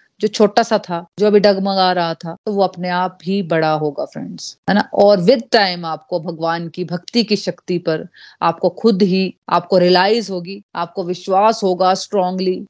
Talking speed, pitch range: 180 wpm, 175-225 Hz